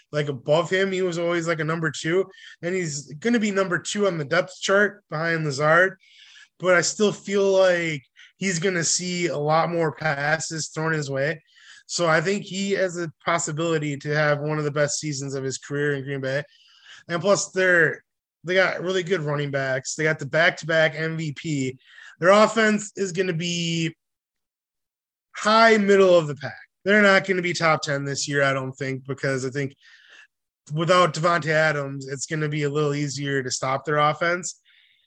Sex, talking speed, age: male, 195 wpm, 20-39